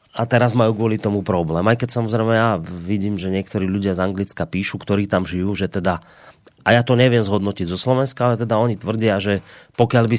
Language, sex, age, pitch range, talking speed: Slovak, male, 30-49, 90-110 Hz, 210 wpm